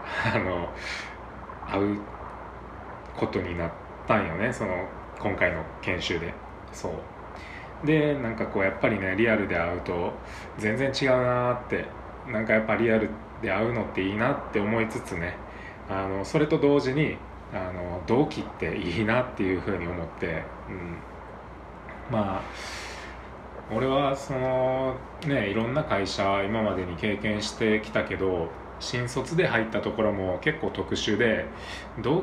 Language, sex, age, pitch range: Japanese, male, 20-39, 95-130 Hz